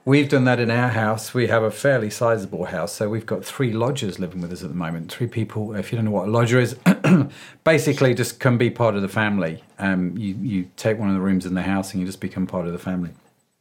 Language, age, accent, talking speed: English, 40-59, British, 265 wpm